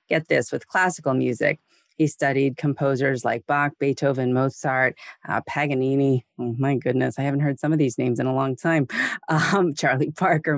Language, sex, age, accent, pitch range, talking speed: English, female, 30-49, American, 130-155 Hz, 175 wpm